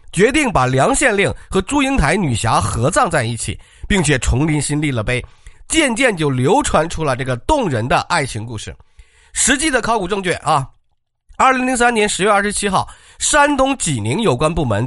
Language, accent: Chinese, native